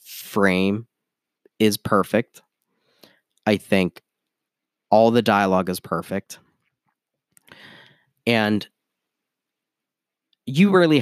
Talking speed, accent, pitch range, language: 70 wpm, American, 100-125 Hz, English